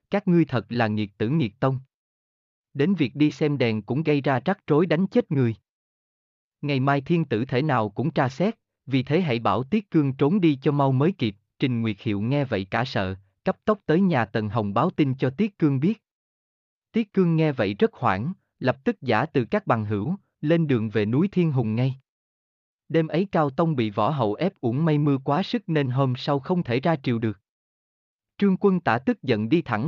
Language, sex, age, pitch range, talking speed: Vietnamese, male, 20-39, 115-165 Hz, 220 wpm